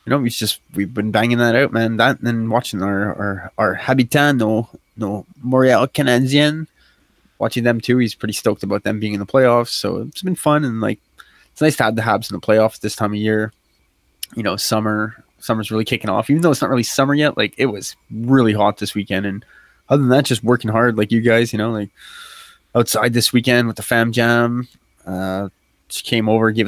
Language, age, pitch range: English, 20-39, 110-130 Hz